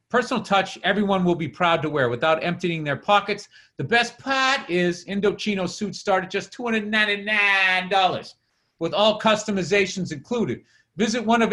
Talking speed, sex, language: 150 wpm, male, English